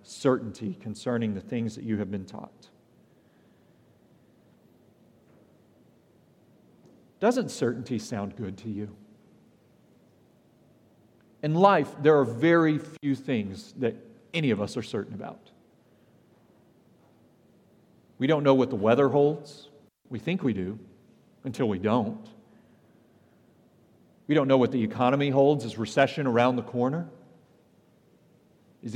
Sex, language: male, English